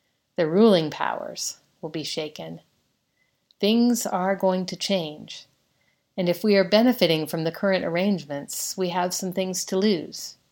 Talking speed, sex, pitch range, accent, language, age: 150 wpm, female, 155-190 Hz, American, English, 50-69